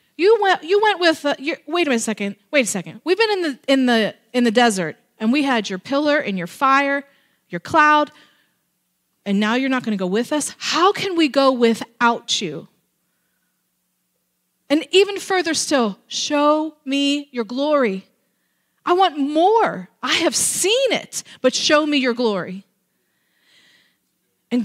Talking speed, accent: 170 wpm, American